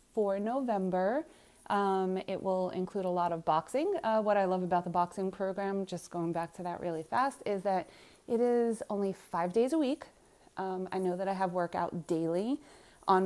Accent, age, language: American, 30-49, English